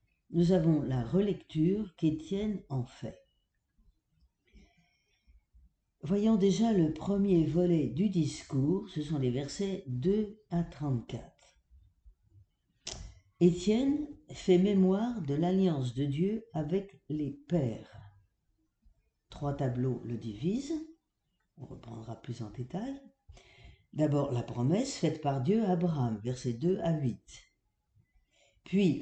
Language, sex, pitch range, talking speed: French, female, 125-190 Hz, 110 wpm